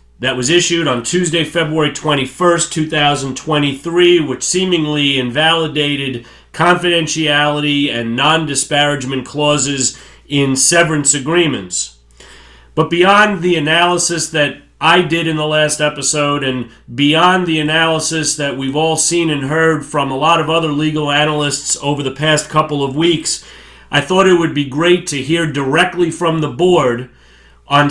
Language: English